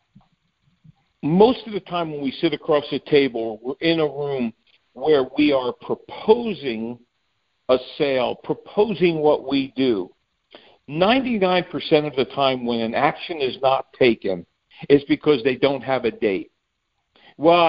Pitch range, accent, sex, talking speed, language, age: 125-170 Hz, American, male, 145 wpm, English, 50-69